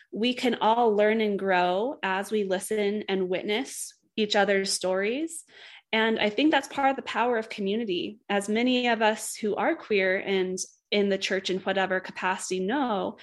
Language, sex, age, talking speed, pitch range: English, female, 20-39, 175 wpm, 185-230 Hz